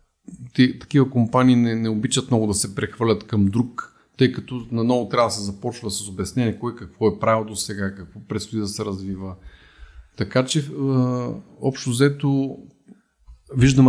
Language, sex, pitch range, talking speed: Bulgarian, male, 100-120 Hz, 165 wpm